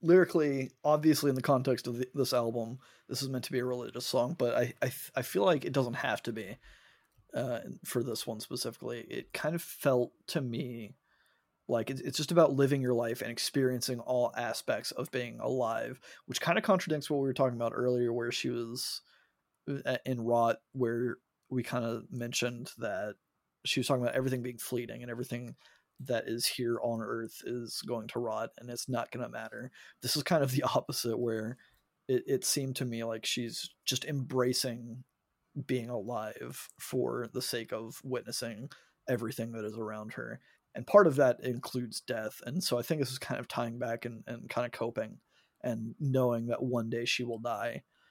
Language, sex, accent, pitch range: English, male, American, 120-135 Hz